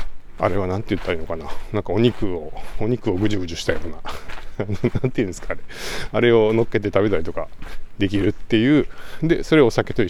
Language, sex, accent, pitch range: Japanese, male, native, 90-110 Hz